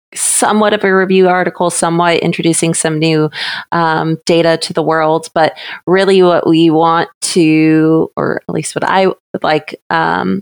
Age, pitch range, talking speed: 30-49, 155-180 Hz, 160 wpm